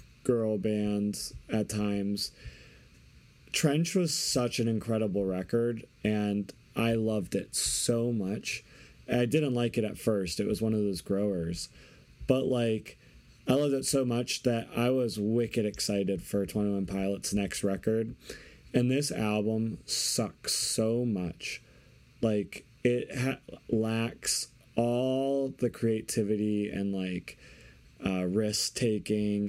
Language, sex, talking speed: English, male, 125 wpm